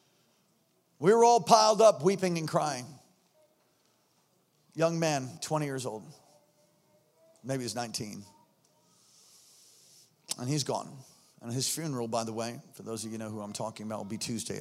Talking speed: 155 wpm